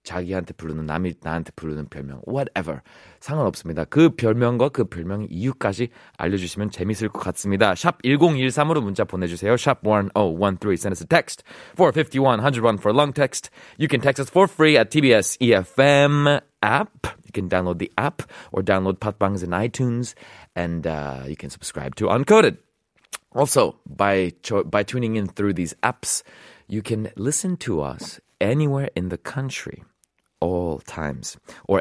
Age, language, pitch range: 30-49, Korean, 90-135 Hz